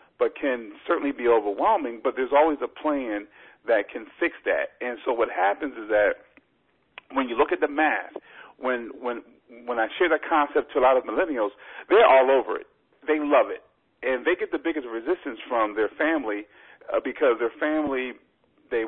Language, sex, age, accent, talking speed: English, male, 50-69, American, 185 wpm